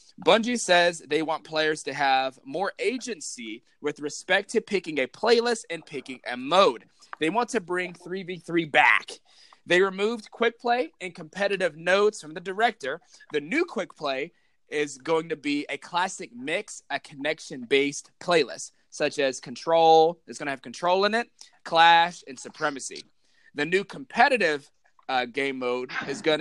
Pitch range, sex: 145-200 Hz, male